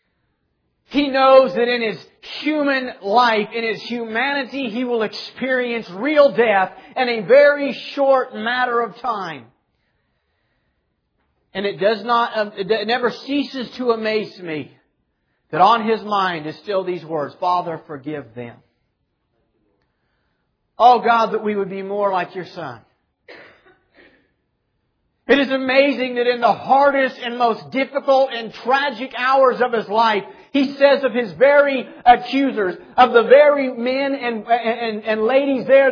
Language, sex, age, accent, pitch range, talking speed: English, male, 40-59, American, 210-265 Hz, 135 wpm